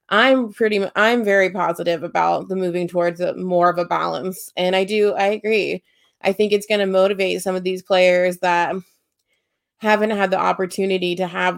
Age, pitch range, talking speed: 20-39, 180-200 Hz, 180 wpm